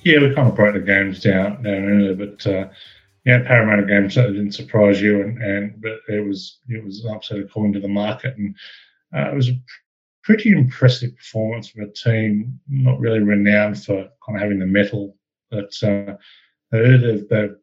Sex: male